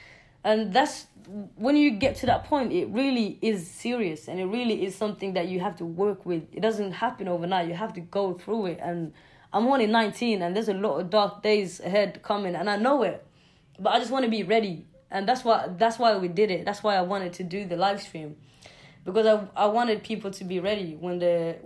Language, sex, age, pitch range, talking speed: Danish, female, 20-39, 175-215 Hz, 235 wpm